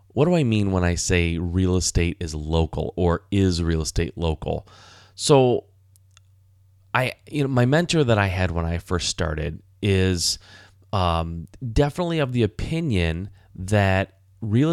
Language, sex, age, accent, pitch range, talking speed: English, male, 30-49, American, 95-120 Hz, 150 wpm